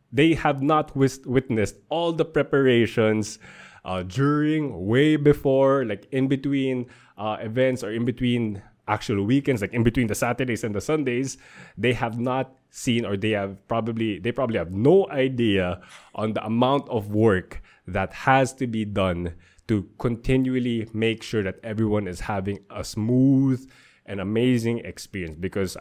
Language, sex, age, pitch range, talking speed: English, male, 20-39, 100-130 Hz, 155 wpm